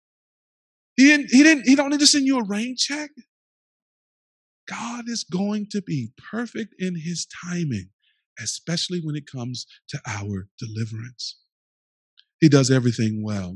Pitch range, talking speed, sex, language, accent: 125-195 Hz, 145 wpm, male, English, American